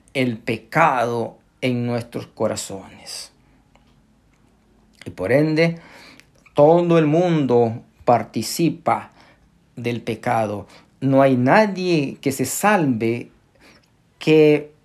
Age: 50-69